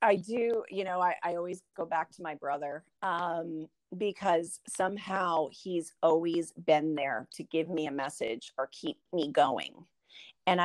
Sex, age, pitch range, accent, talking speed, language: female, 30-49, 155-195 Hz, American, 165 wpm, English